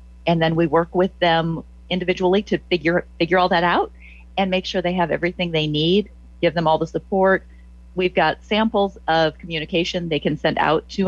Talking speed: 195 wpm